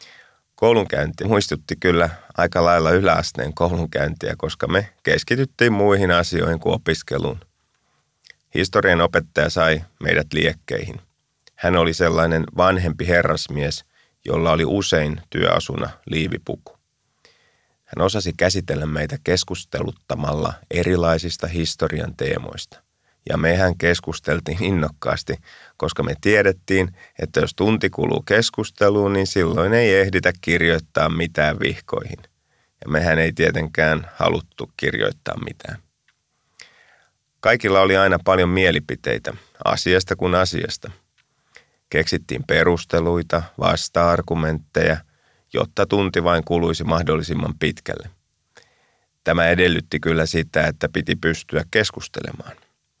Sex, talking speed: male, 100 wpm